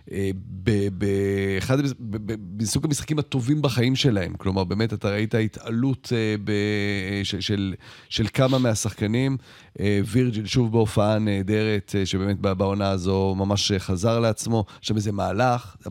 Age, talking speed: 40-59, 110 wpm